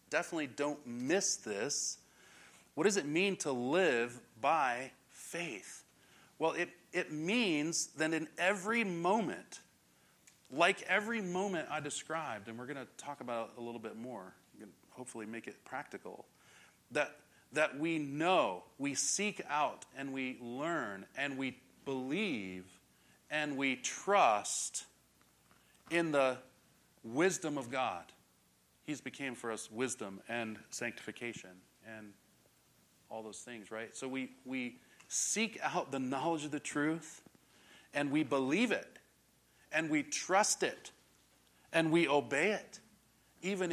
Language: English